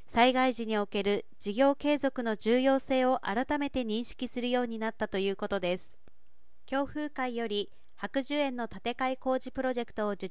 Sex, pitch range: female, 215-270 Hz